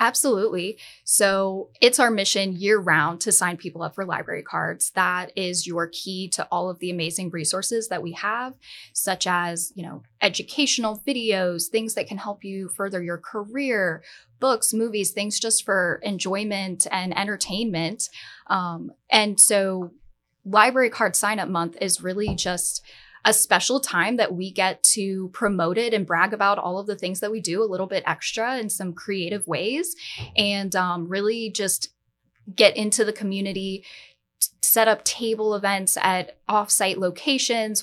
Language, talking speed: English, 160 wpm